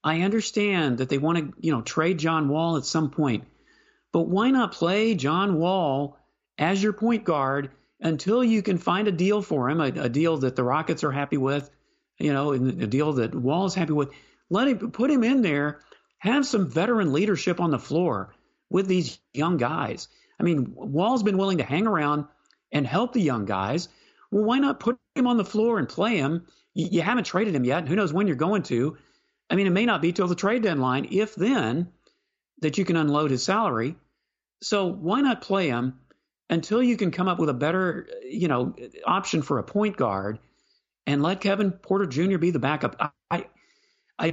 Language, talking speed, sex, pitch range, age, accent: English, 205 wpm, male, 145-205 Hz, 40-59, American